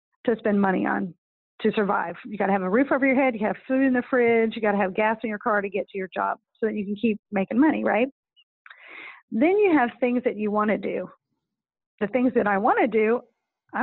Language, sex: English, female